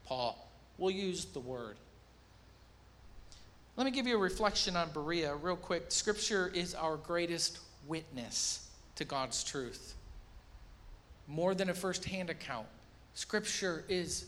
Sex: male